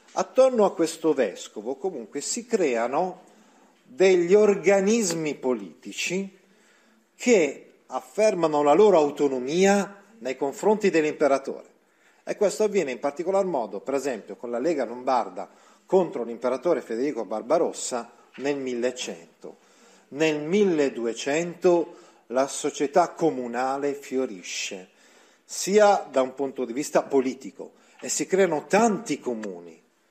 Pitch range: 135-195 Hz